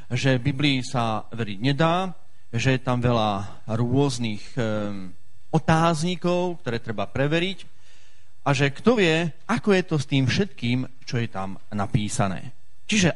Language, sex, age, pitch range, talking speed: Slovak, male, 40-59, 100-155 Hz, 130 wpm